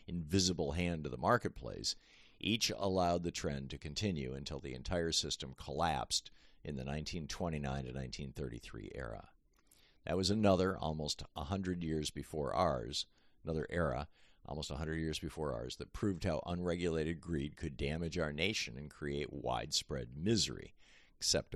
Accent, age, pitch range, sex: American, 50-69, 70-90 Hz, male